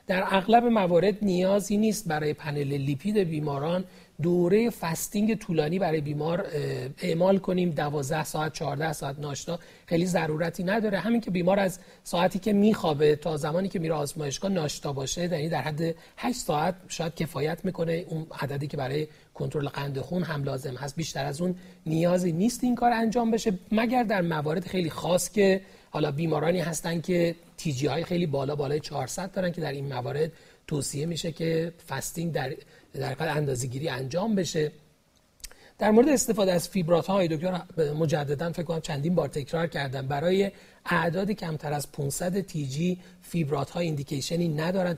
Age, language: 40-59, Persian